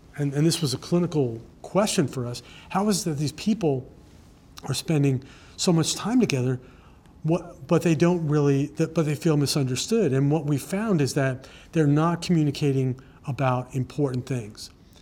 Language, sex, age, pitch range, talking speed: English, male, 50-69, 125-150 Hz, 165 wpm